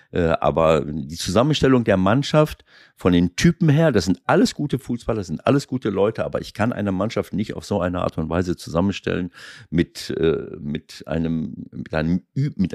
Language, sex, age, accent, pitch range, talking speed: German, male, 50-69, German, 90-130 Hz, 180 wpm